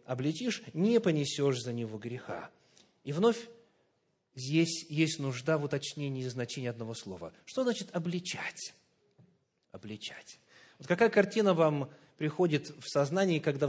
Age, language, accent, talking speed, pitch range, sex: 30-49, Russian, native, 125 wpm, 140-195 Hz, male